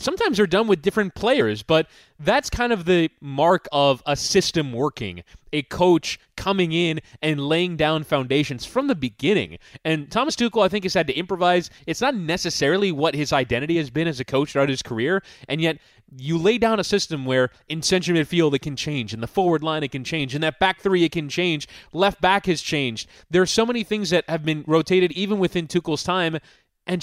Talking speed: 215 wpm